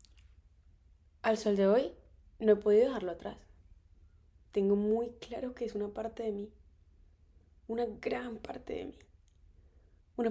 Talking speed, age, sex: 140 wpm, 20-39, female